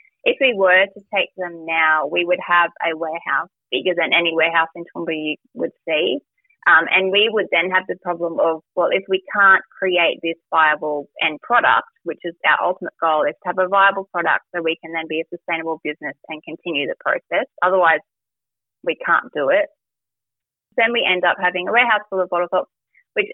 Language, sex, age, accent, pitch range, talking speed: English, female, 20-39, Australian, 165-200 Hz, 205 wpm